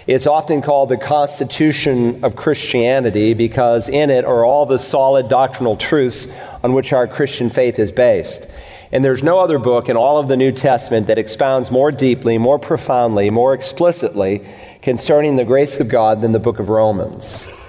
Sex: male